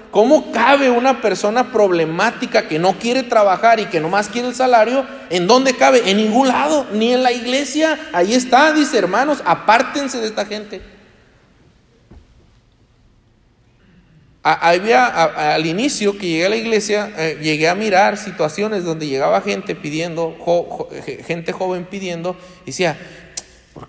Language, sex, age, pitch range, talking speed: Spanish, male, 40-59, 180-245 Hz, 155 wpm